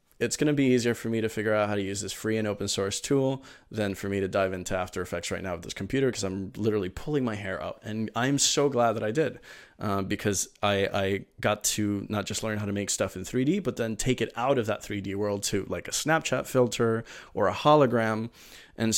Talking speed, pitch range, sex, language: 250 wpm, 100-120 Hz, male, English